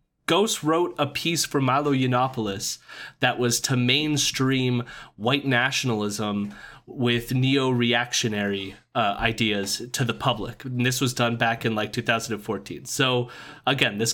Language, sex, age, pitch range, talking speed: English, male, 30-49, 115-145 Hz, 130 wpm